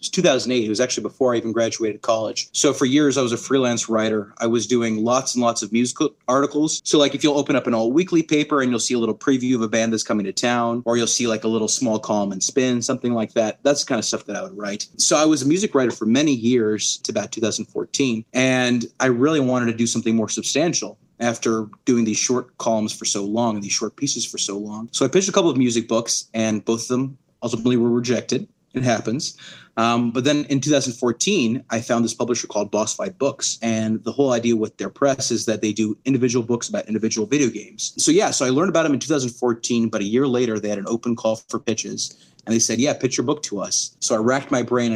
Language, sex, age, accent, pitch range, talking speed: English, male, 30-49, American, 110-130 Hz, 250 wpm